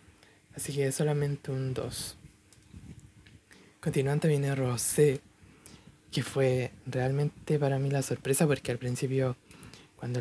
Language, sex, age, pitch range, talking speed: Spanish, male, 20-39, 125-140 Hz, 120 wpm